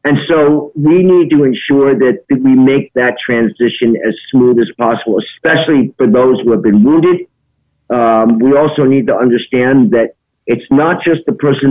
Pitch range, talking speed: 120-140 Hz, 180 wpm